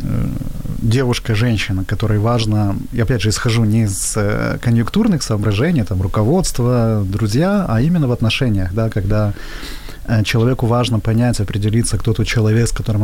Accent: native